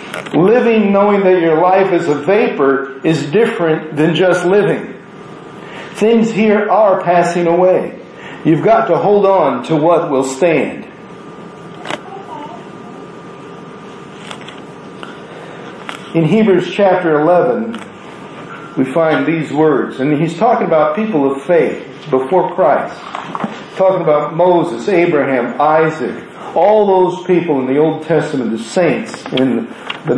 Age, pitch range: 50-69, 155-205 Hz